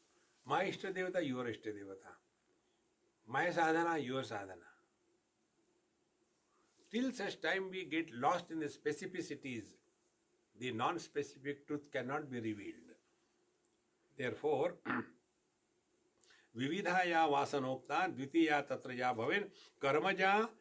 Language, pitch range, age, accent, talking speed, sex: English, 130-200 Hz, 60-79, Indian, 90 wpm, male